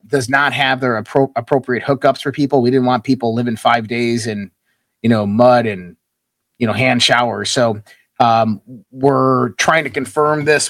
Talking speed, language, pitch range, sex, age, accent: 180 wpm, English, 115-140 Hz, male, 30-49, American